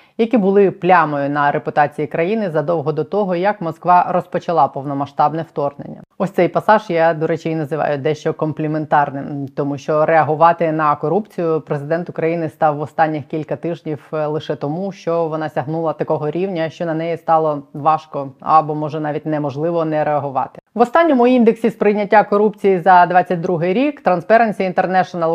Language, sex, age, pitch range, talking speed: Ukrainian, female, 20-39, 155-195 Hz, 150 wpm